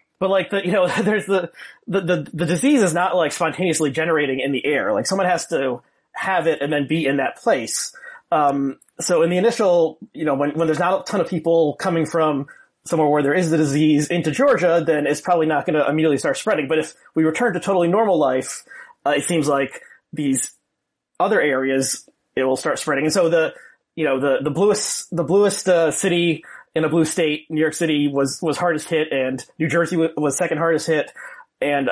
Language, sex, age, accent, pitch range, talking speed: English, male, 30-49, American, 150-185 Hz, 215 wpm